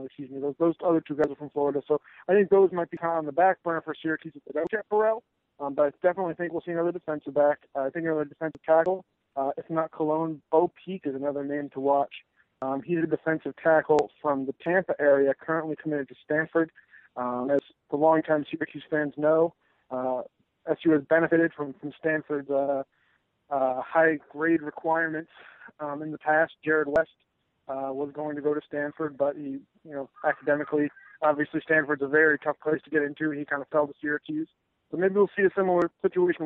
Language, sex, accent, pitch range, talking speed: English, male, American, 145-165 Hz, 210 wpm